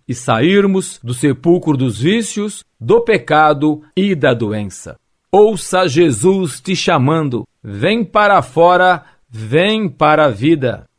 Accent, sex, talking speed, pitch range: Brazilian, male, 120 wpm, 130-170 Hz